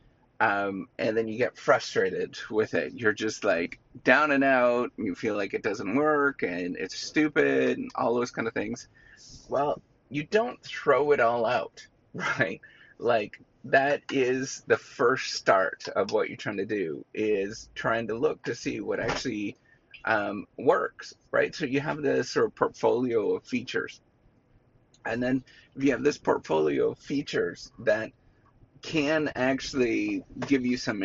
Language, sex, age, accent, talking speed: English, male, 30-49, American, 160 wpm